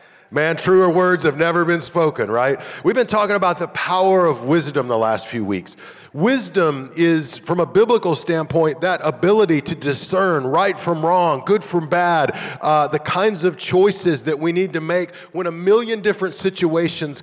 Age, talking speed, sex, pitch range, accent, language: 40-59, 180 wpm, male, 150-185 Hz, American, English